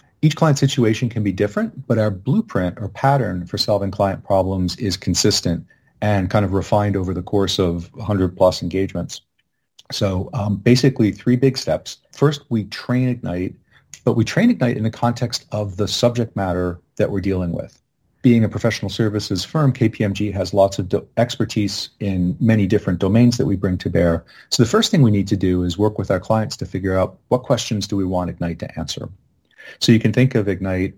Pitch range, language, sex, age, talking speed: 95-120 Hz, English, male, 40-59, 200 wpm